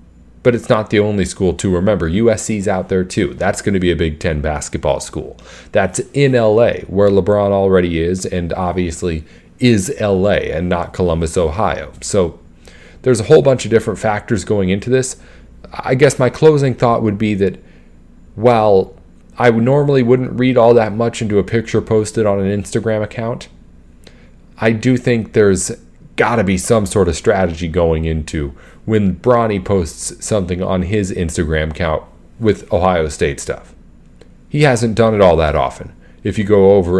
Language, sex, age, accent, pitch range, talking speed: English, male, 40-59, American, 85-115 Hz, 170 wpm